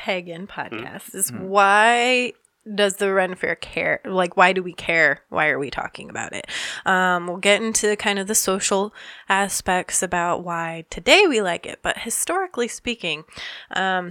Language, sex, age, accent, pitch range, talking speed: English, female, 20-39, American, 175-205 Hz, 160 wpm